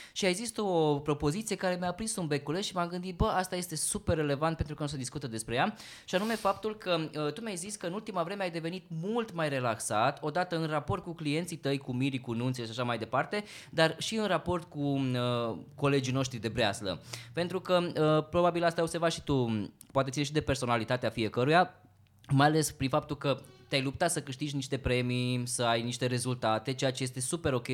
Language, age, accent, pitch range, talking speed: Romanian, 20-39, native, 130-175 Hz, 215 wpm